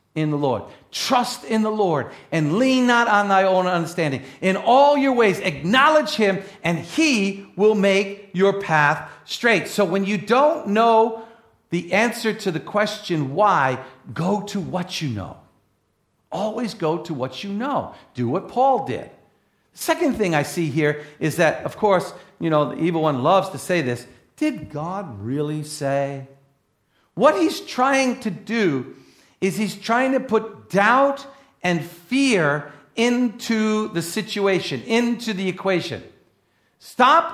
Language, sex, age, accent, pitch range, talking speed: English, male, 50-69, American, 165-235 Hz, 155 wpm